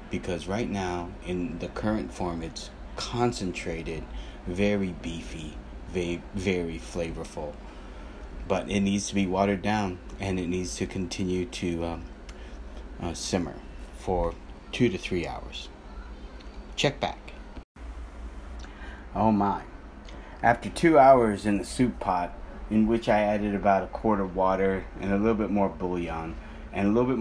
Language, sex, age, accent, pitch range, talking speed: English, male, 30-49, American, 70-100 Hz, 145 wpm